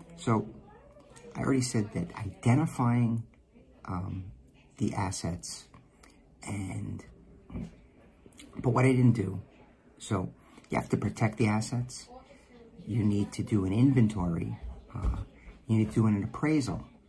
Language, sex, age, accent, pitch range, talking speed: English, male, 50-69, American, 95-120 Hz, 125 wpm